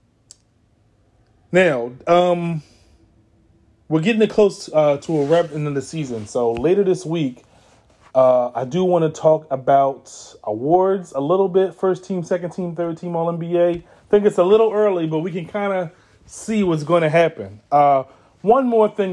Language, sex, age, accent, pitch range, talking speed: English, male, 30-49, American, 130-190 Hz, 175 wpm